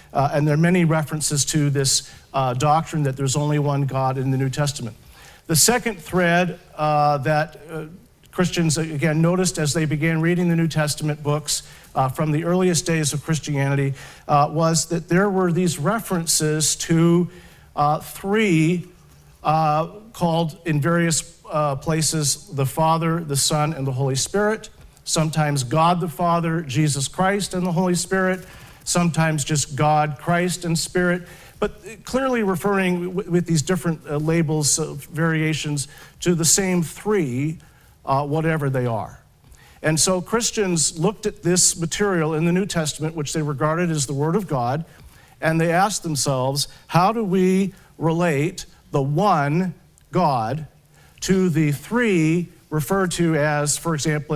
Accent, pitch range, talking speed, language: American, 145-175 Hz, 155 wpm, English